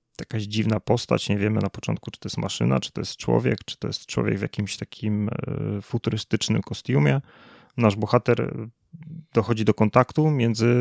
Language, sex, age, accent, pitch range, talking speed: Polish, male, 30-49, native, 105-120 Hz, 170 wpm